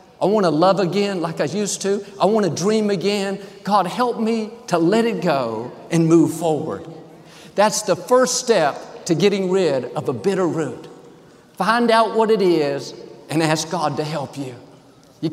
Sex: male